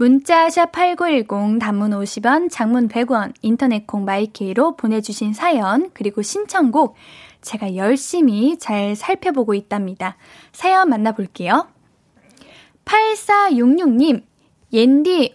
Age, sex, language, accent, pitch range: 10-29, female, Korean, native, 230-345 Hz